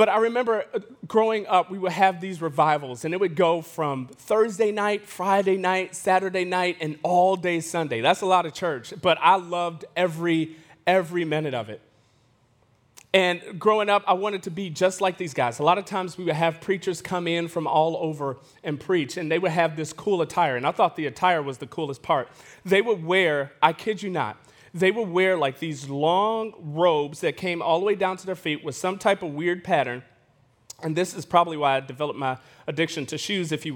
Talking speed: 215 wpm